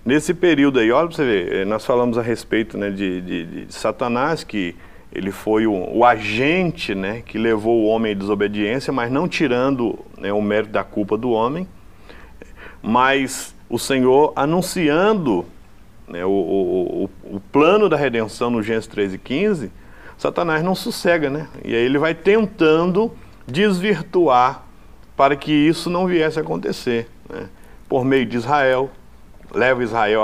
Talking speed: 160 wpm